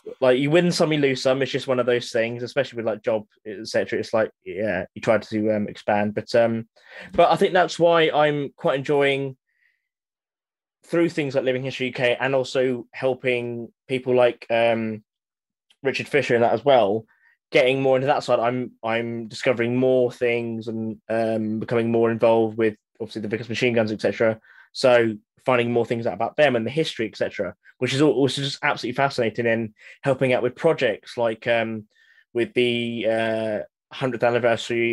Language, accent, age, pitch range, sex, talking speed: English, British, 10-29, 115-130 Hz, male, 180 wpm